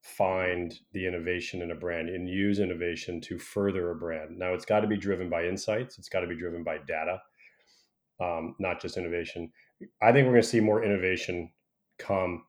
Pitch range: 85-110 Hz